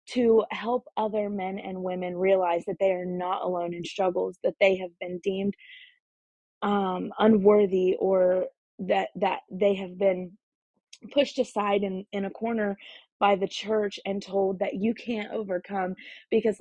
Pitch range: 185-215 Hz